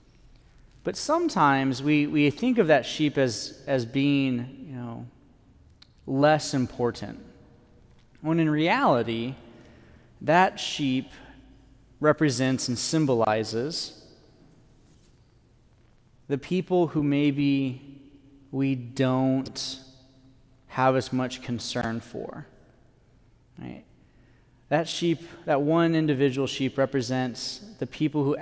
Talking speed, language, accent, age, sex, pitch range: 95 wpm, English, American, 30-49, male, 125-145 Hz